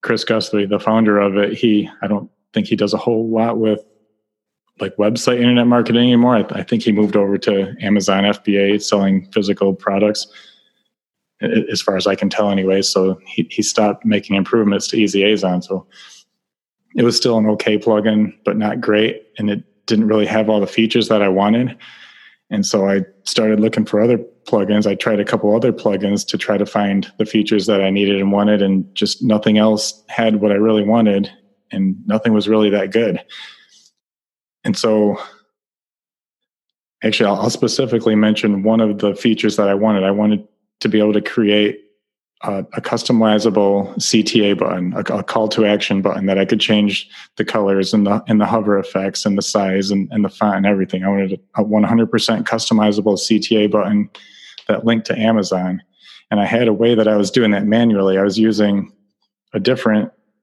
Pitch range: 100-110 Hz